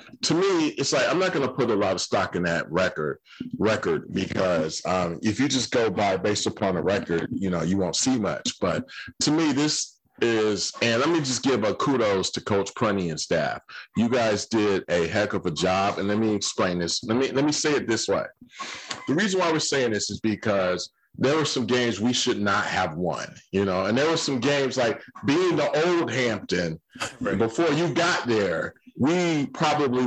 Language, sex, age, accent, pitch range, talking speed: English, male, 40-59, American, 105-145 Hz, 215 wpm